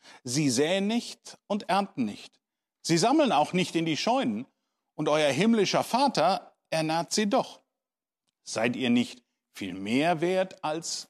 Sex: male